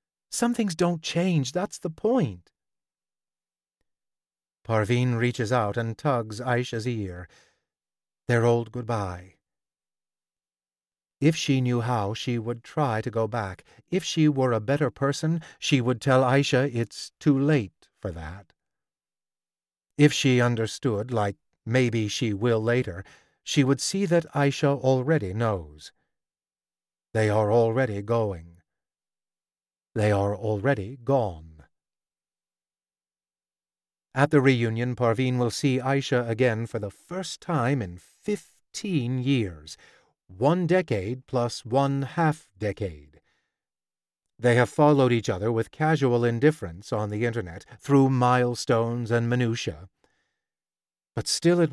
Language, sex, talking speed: English, male, 120 wpm